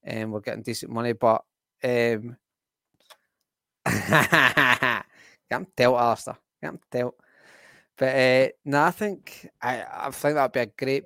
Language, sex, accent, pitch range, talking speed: English, male, British, 120-135 Hz, 140 wpm